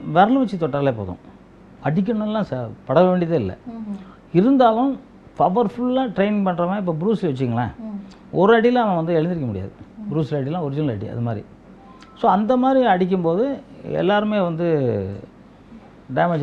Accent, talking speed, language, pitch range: native, 135 wpm, Tamil, 135-200 Hz